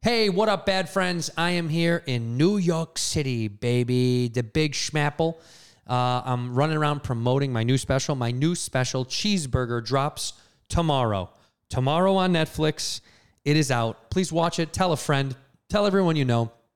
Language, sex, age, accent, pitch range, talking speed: English, male, 30-49, American, 125-160 Hz, 165 wpm